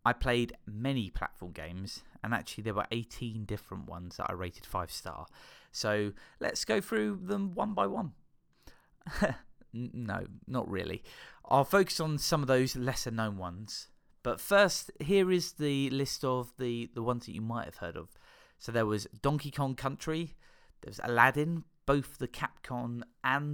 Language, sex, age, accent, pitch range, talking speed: English, male, 30-49, British, 110-155 Hz, 170 wpm